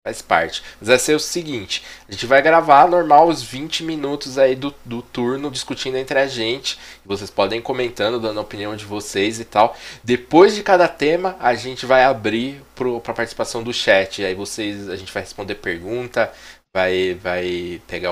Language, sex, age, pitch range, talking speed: Portuguese, male, 20-39, 95-135 Hz, 185 wpm